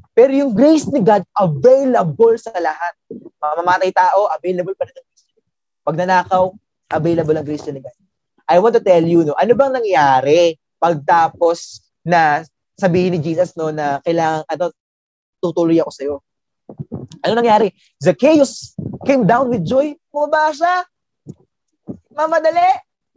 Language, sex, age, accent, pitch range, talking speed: Filipino, male, 20-39, native, 180-285 Hz, 135 wpm